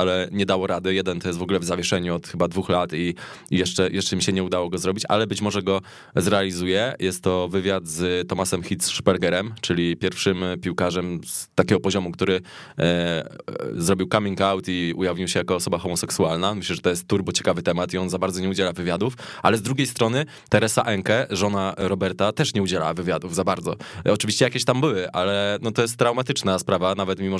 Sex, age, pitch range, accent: male, 20-39, 95-115 Hz, native